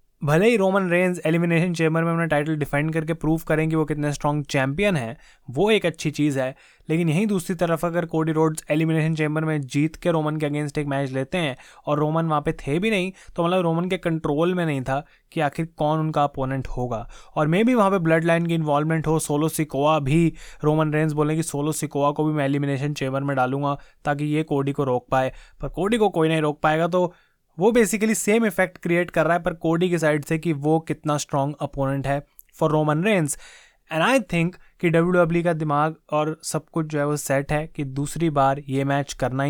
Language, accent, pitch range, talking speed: Hindi, native, 145-170 Hz, 220 wpm